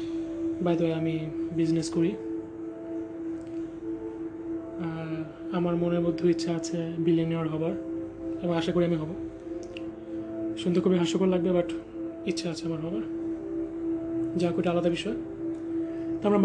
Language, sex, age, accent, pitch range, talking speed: Bengali, male, 20-39, native, 165-185 Hz, 115 wpm